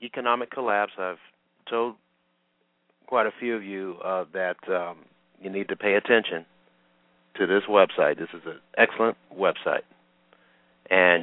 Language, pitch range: English, 80-100 Hz